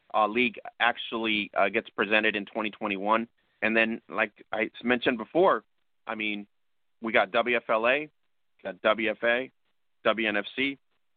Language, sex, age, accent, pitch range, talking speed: English, male, 30-49, American, 105-120 Hz, 120 wpm